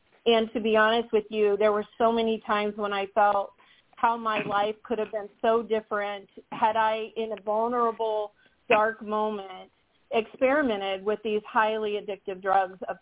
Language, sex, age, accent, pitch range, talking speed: English, female, 40-59, American, 205-235 Hz, 165 wpm